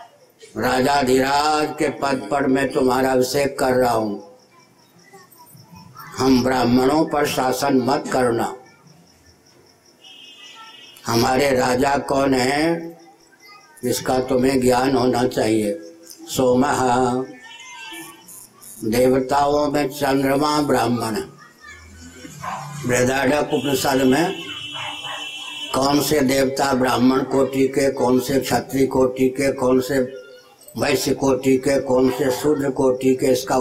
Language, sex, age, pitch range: Hindi, male, 60-79, 125-140 Hz